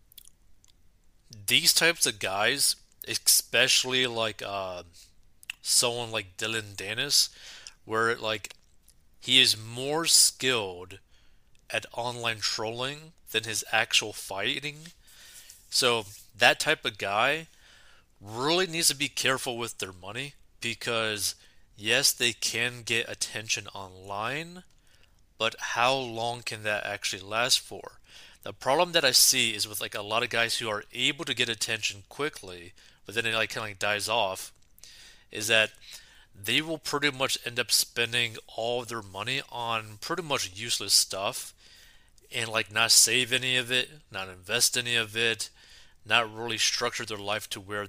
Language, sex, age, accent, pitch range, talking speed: English, male, 30-49, American, 105-125 Hz, 150 wpm